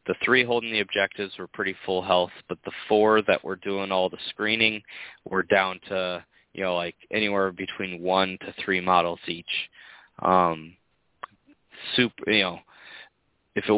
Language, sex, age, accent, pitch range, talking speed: English, male, 20-39, American, 90-105 Hz, 160 wpm